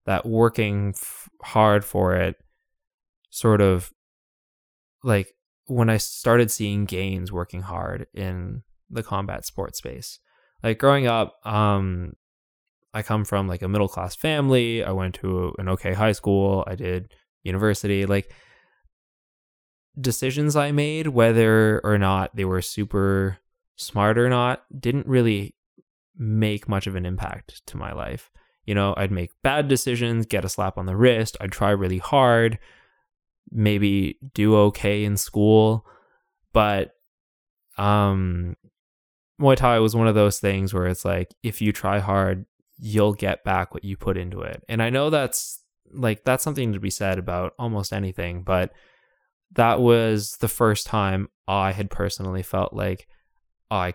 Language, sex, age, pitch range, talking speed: English, male, 20-39, 95-115 Hz, 150 wpm